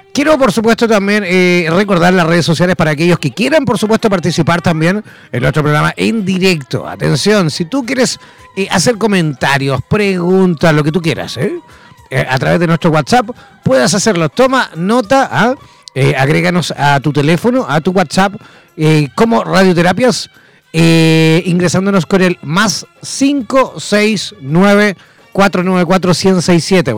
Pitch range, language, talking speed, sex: 165-220 Hz, Spanish, 135 wpm, male